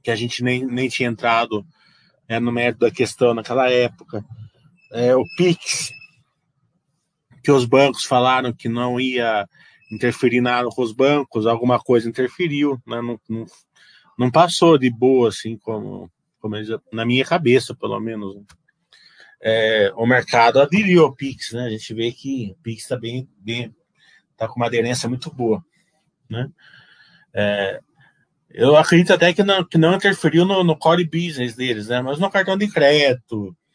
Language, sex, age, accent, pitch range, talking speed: Portuguese, male, 20-39, Brazilian, 115-155 Hz, 165 wpm